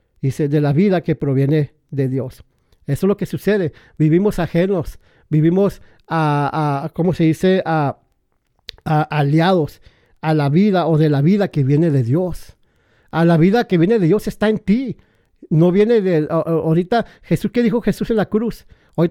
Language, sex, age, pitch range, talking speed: English, male, 50-69, 155-195 Hz, 180 wpm